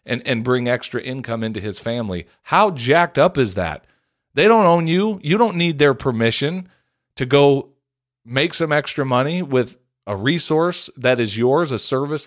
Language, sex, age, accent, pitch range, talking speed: English, male, 40-59, American, 110-150 Hz, 175 wpm